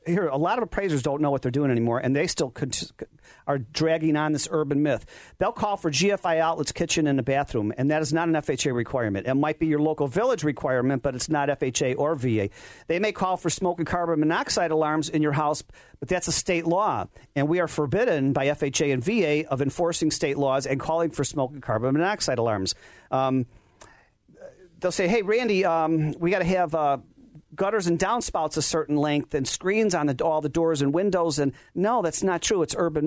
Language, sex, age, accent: English, male, 40-59, American